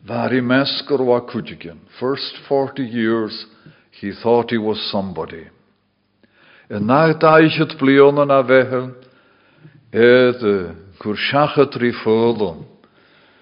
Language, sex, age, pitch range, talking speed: English, male, 60-79, 110-150 Hz, 50 wpm